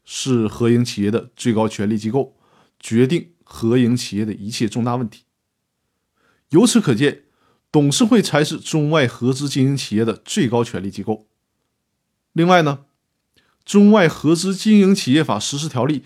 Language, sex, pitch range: Chinese, male, 120-170 Hz